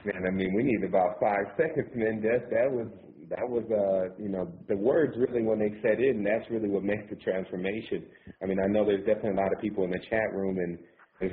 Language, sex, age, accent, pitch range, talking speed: English, male, 30-49, American, 85-100 Hz, 245 wpm